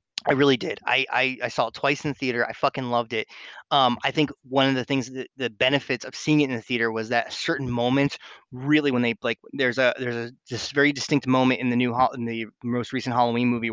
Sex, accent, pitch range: male, American, 125-155 Hz